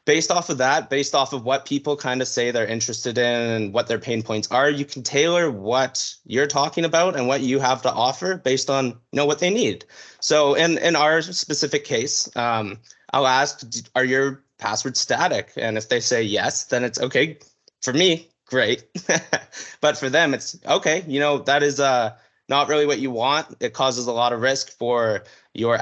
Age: 20-39